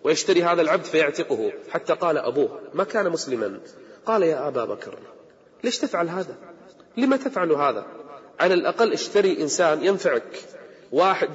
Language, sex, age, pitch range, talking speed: Arabic, male, 30-49, 165-225 Hz, 135 wpm